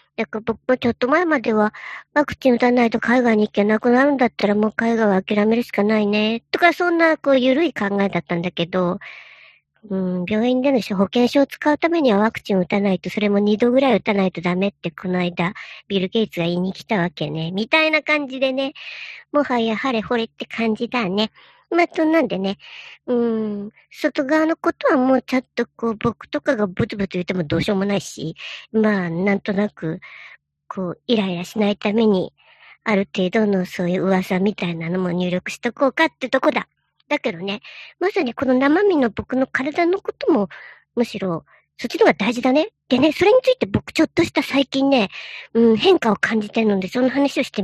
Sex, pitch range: male, 200-275 Hz